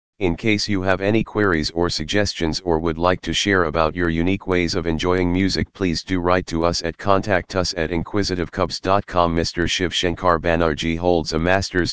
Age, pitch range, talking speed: 40-59, 80-95 Hz, 185 wpm